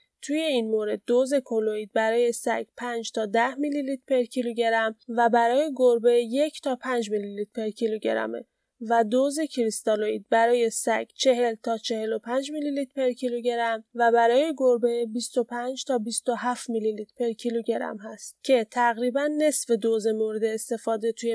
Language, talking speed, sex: Persian, 150 wpm, female